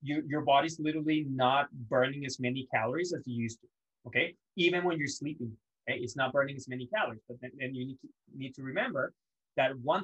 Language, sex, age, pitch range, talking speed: English, male, 20-39, 125-155 Hz, 215 wpm